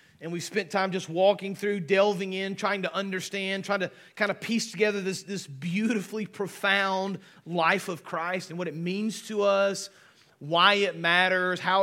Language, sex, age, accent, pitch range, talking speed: English, male, 30-49, American, 185-215 Hz, 180 wpm